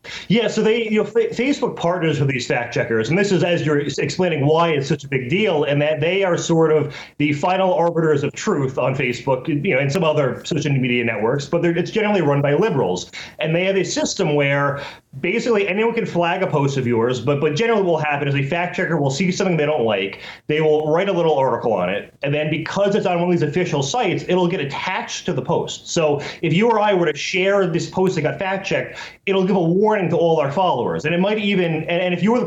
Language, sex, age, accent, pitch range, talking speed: English, male, 30-49, American, 150-190 Hz, 255 wpm